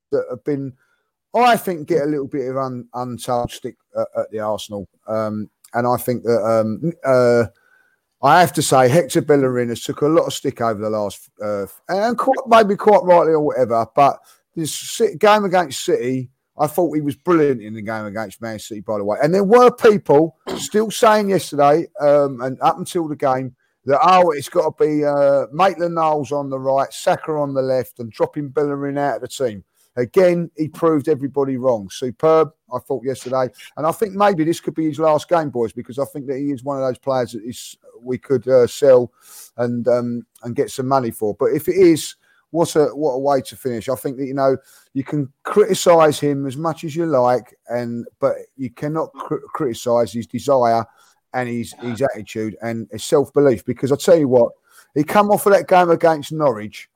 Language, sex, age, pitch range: English, male, 30-49, 120-165 Hz